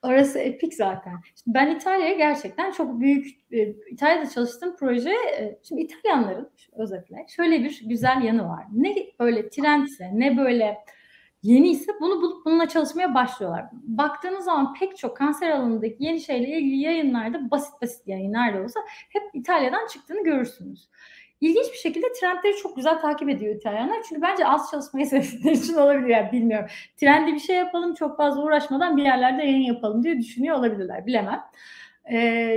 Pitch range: 235-325 Hz